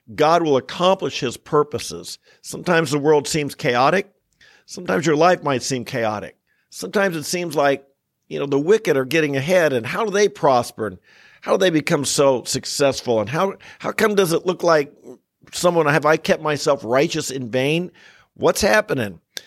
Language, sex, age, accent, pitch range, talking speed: English, male, 50-69, American, 130-170 Hz, 175 wpm